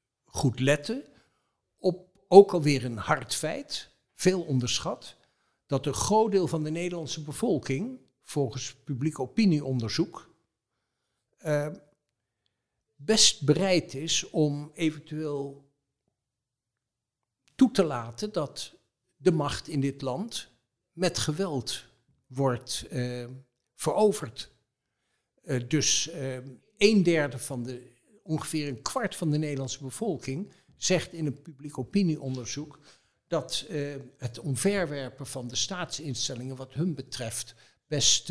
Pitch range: 125-165 Hz